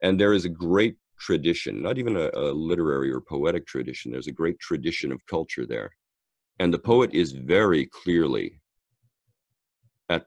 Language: English